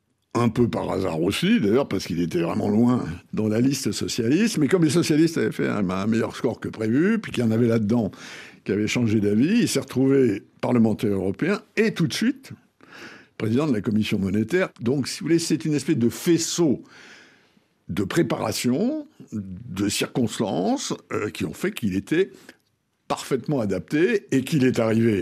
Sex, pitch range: male, 105-165 Hz